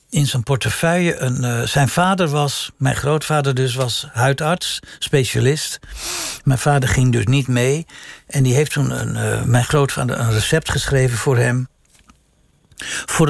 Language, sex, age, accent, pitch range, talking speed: Dutch, male, 60-79, Dutch, 120-145 Hz, 145 wpm